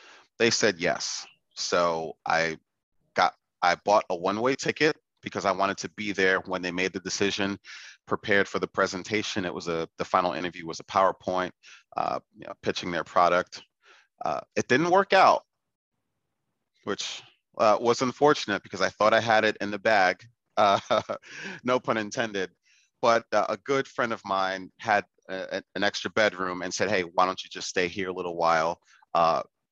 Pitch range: 85-105 Hz